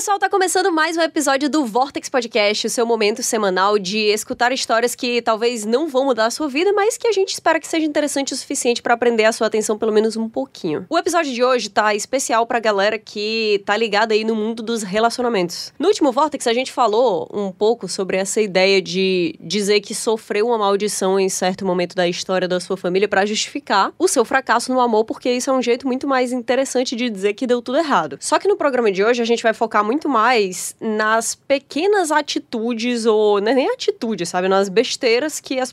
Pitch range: 205-270 Hz